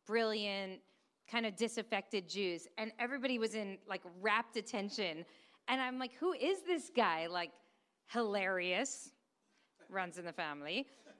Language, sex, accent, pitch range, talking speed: English, female, American, 195-260 Hz, 135 wpm